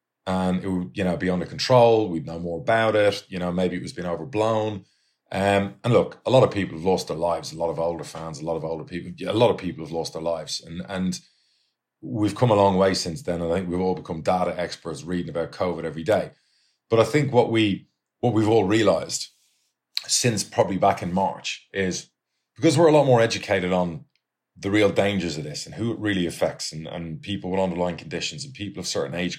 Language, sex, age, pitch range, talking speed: English, male, 30-49, 85-105 Hz, 230 wpm